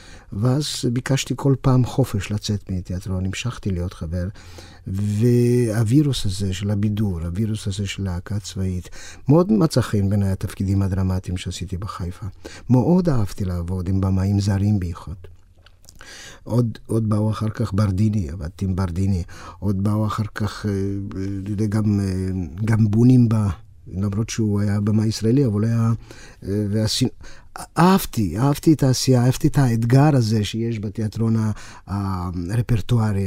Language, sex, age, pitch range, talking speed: Hebrew, male, 50-69, 100-130 Hz, 130 wpm